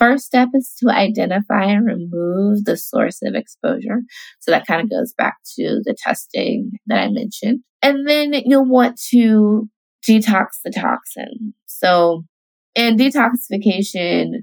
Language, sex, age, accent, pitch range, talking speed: English, female, 20-39, American, 185-245 Hz, 140 wpm